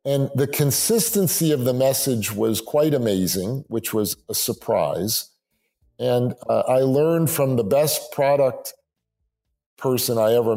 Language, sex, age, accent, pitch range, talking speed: English, male, 50-69, American, 110-145 Hz, 135 wpm